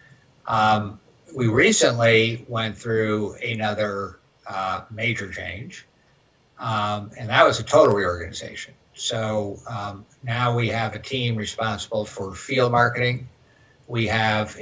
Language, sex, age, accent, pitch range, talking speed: English, male, 60-79, American, 105-120 Hz, 115 wpm